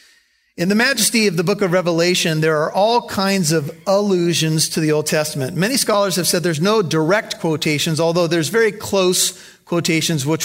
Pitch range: 150-185 Hz